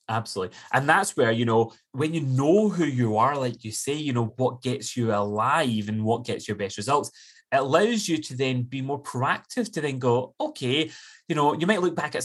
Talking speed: 225 wpm